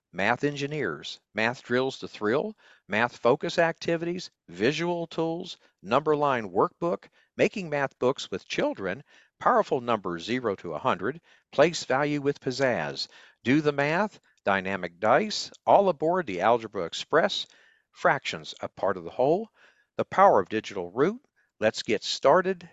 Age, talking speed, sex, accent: 50-69, 135 wpm, male, American